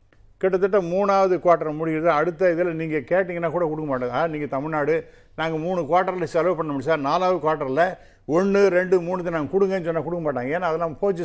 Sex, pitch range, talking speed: male, 140-175 Hz, 185 wpm